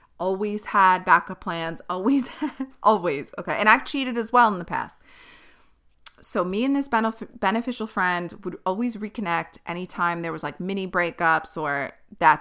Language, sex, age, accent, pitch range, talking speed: English, female, 30-49, American, 175-225 Hz, 155 wpm